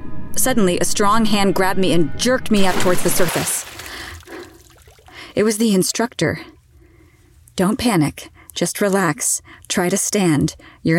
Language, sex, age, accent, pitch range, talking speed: English, female, 30-49, American, 160-210 Hz, 135 wpm